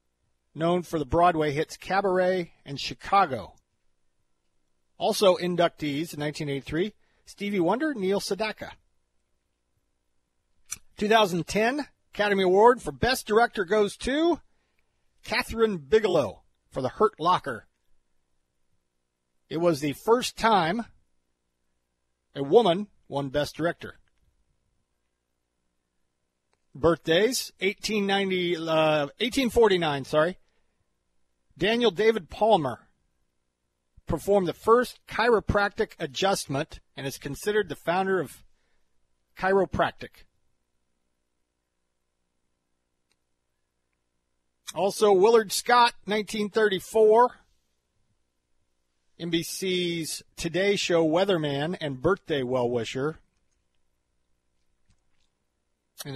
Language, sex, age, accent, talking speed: English, male, 40-59, American, 75 wpm